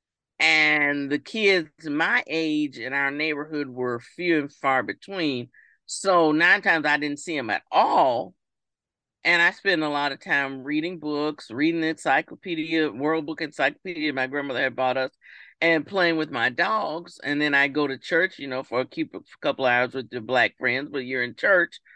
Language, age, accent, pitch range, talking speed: English, 40-59, American, 130-160 Hz, 185 wpm